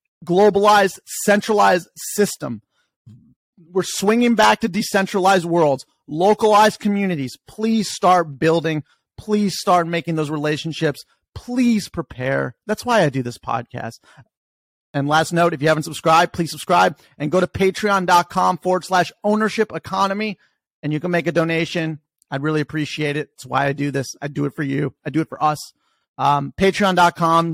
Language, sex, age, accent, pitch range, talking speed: English, male, 30-49, American, 150-185 Hz, 155 wpm